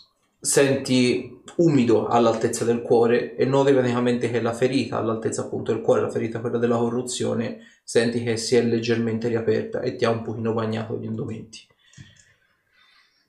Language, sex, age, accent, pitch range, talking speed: Italian, male, 30-49, native, 115-140 Hz, 155 wpm